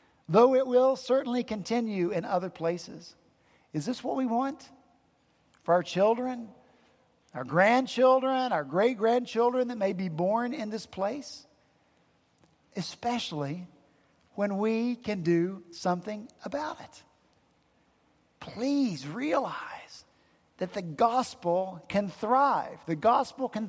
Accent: American